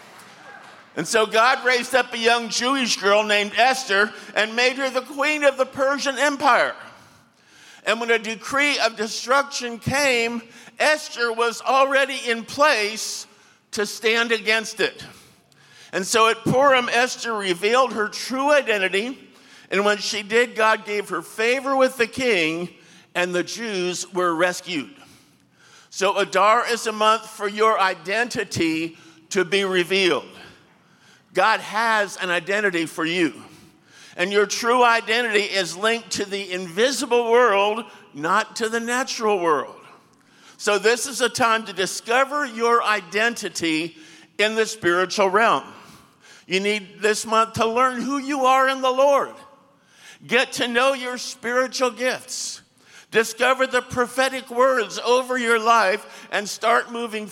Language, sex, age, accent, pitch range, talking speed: English, male, 50-69, American, 200-250 Hz, 140 wpm